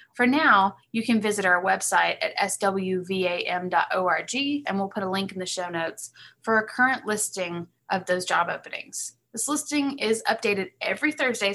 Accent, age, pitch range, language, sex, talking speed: American, 20-39, 185-230 Hz, English, female, 165 wpm